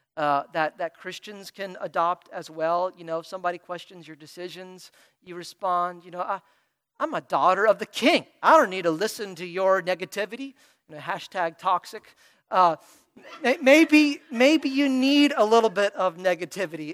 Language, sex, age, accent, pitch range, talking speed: English, male, 40-59, American, 180-250 Hz, 170 wpm